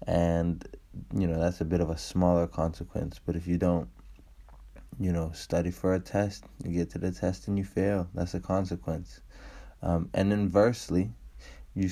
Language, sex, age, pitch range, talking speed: English, male, 20-39, 85-95 Hz, 175 wpm